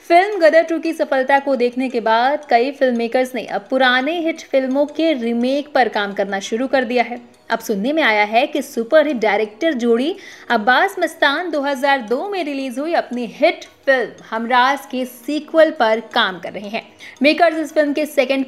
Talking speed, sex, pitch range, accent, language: 190 wpm, female, 235-310 Hz, native, Hindi